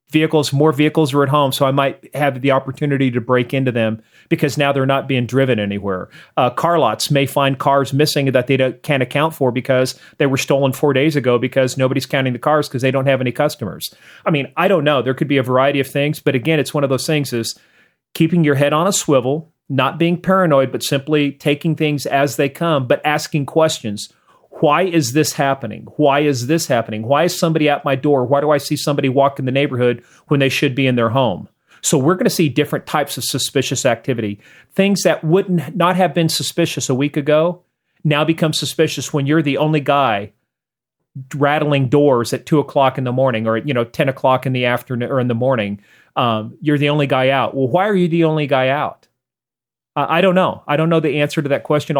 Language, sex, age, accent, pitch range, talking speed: English, male, 40-59, American, 130-155 Hz, 225 wpm